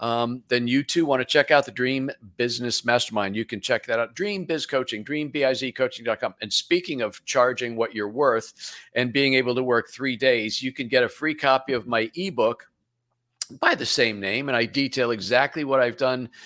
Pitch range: 115-145 Hz